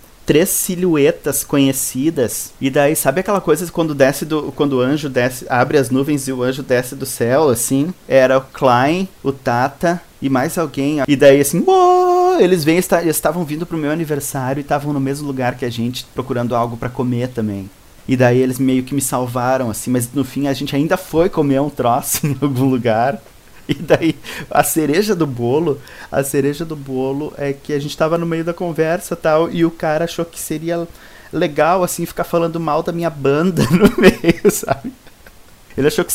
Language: Portuguese